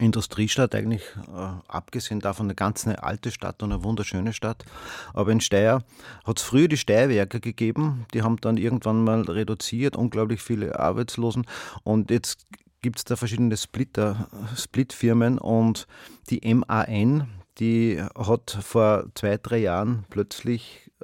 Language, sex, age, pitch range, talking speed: German, male, 30-49, 100-120 Hz, 140 wpm